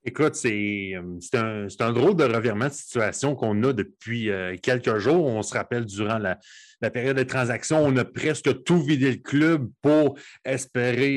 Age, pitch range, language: 30-49, 105-130 Hz, French